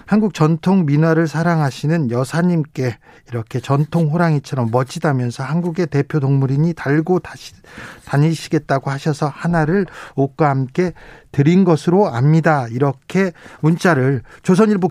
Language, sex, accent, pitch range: Korean, male, native, 140-185 Hz